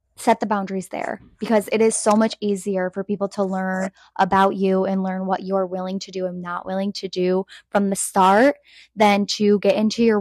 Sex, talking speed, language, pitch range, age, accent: female, 210 wpm, English, 190-220 Hz, 10-29, American